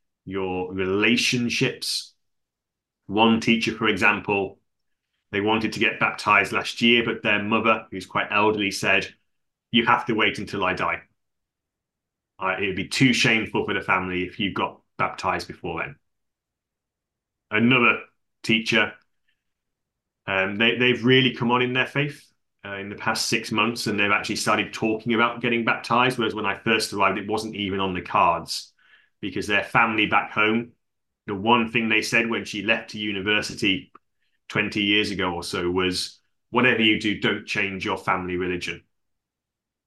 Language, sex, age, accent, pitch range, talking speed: English, male, 30-49, British, 100-120 Hz, 160 wpm